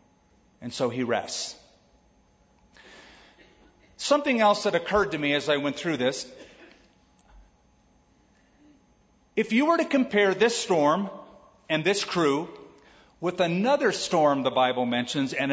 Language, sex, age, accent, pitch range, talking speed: English, male, 40-59, American, 155-230 Hz, 125 wpm